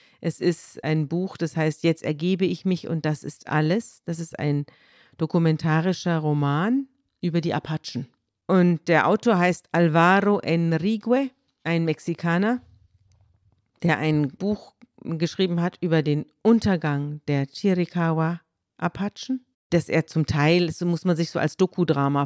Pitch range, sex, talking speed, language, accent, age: 145-175 Hz, female, 135 wpm, German, German, 50-69